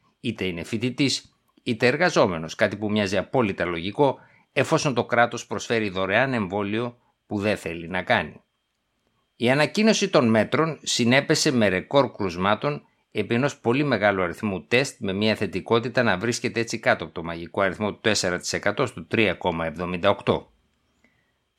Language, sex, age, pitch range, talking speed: Greek, male, 60-79, 100-125 Hz, 135 wpm